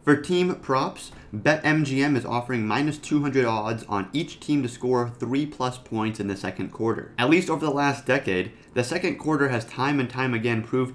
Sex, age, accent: male, 30-49, American